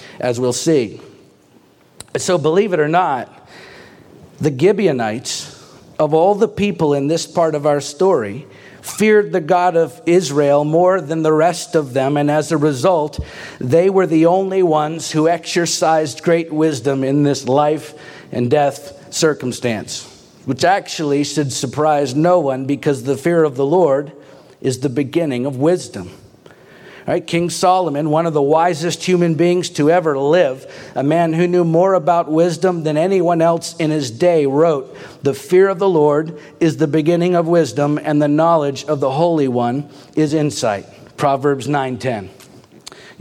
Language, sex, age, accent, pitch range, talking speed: English, male, 50-69, American, 145-175 Hz, 155 wpm